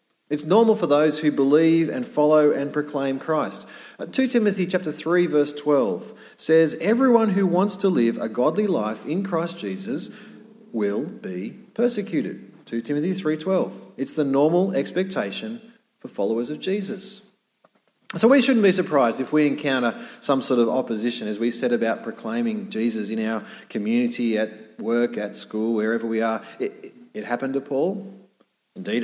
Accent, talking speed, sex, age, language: Australian, 160 wpm, male, 30-49, English